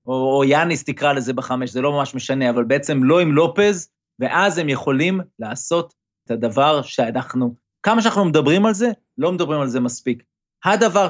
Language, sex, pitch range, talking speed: Hebrew, male, 130-170 Hz, 180 wpm